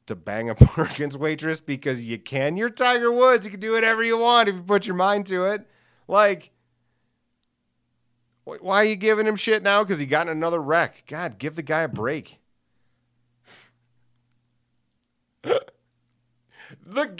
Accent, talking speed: American, 155 wpm